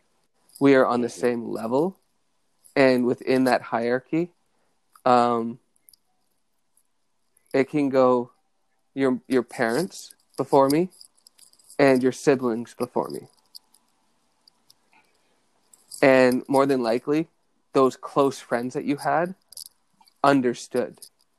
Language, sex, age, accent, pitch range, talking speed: English, male, 30-49, American, 125-140 Hz, 100 wpm